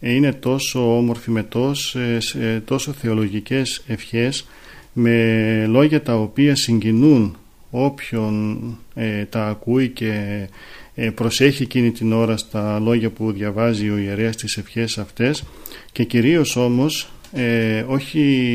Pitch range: 110-130 Hz